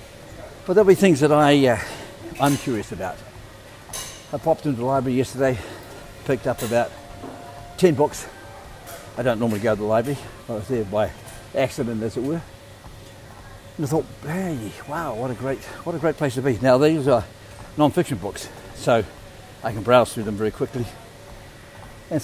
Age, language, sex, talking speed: 60-79, English, male, 165 wpm